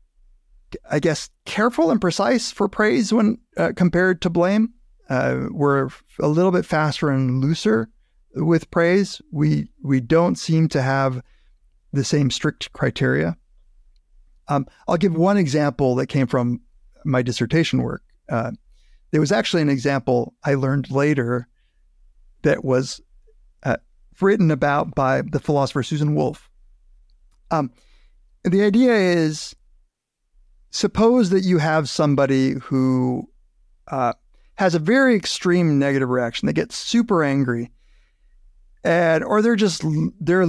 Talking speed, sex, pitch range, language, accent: 130 wpm, male, 125-180 Hz, English, American